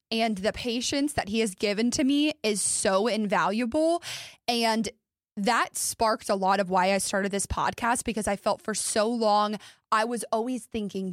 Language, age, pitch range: English, 20-39, 200-245 Hz